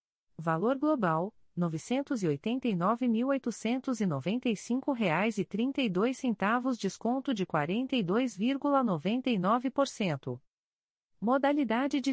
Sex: female